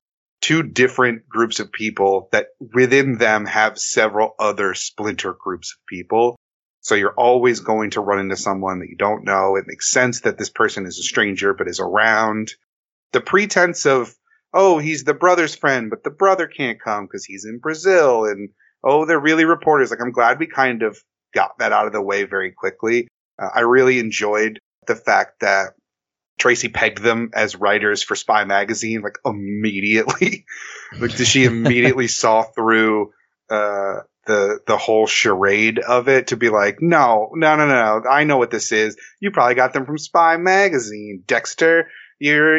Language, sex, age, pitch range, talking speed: English, male, 30-49, 105-145 Hz, 180 wpm